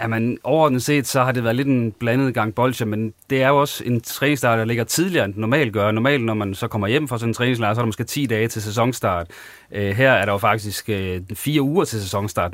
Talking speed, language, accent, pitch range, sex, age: 260 wpm, Danish, native, 100-120 Hz, male, 30-49